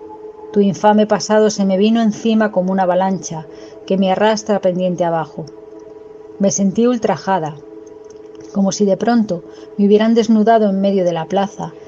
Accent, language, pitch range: Spanish, Spanish, 180-235 Hz